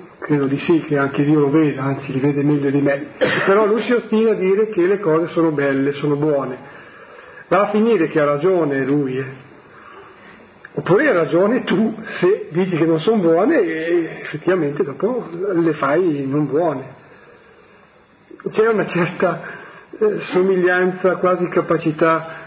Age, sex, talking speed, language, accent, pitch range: 50-69, male, 160 wpm, Italian, native, 145-185 Hz